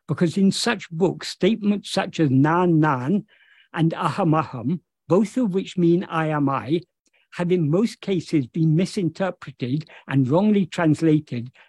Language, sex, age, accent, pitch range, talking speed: English, male, 60-79, British, 150-190 Hz, 140 wpm